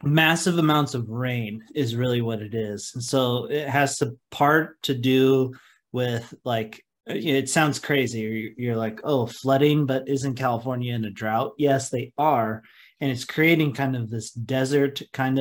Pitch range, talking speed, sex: 115-140 Hz, 170 wpm, male